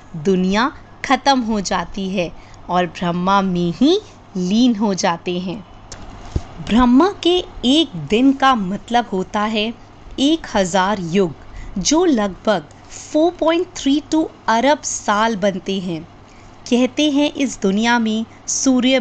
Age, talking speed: 20-39, 115 wpm